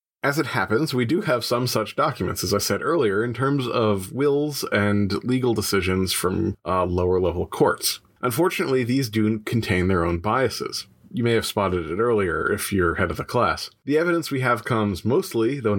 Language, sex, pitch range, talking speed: English, male, 100-125 Hz, 190 wpm